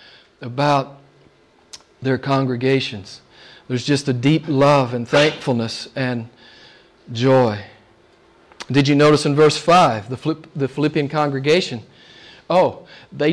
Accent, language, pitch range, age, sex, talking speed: American, English, 160-260 Hz, 40-59, male, 110 wpm